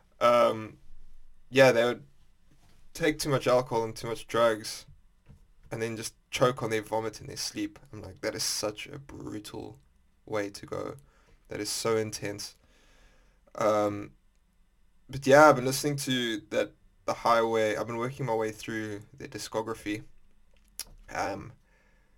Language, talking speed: English, 150 wpm